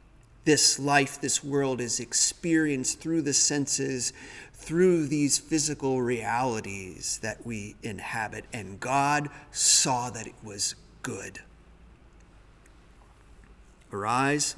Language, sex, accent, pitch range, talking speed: English, male, American, 100-140 Hz, 100 wpm